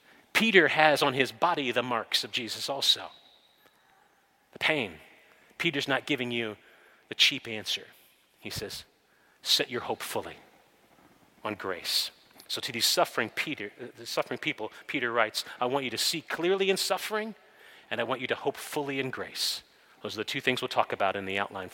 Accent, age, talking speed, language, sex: American, 40-59, 180 wpm, English, male